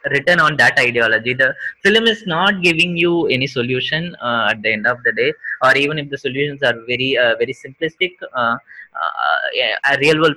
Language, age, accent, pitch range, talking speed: Tamil, 20-39, native, 140-220 Hz, 195 wpm